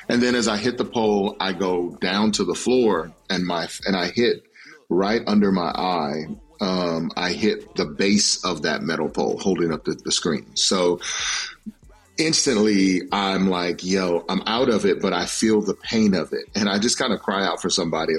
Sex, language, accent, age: male, English, American, 40-59